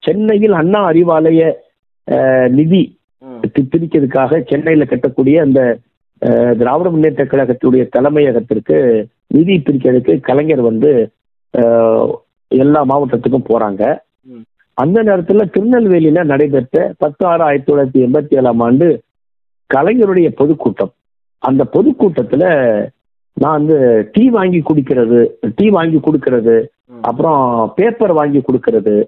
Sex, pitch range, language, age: male, 125-165 Hz, Tamil, 50-69